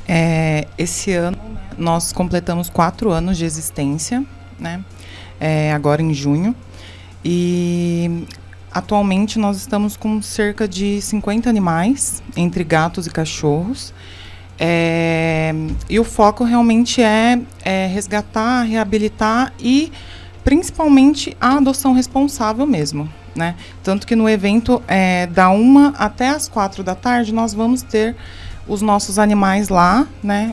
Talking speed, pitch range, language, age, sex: 115 wpm, 165-225 Hz, Portuguese, 20-39, female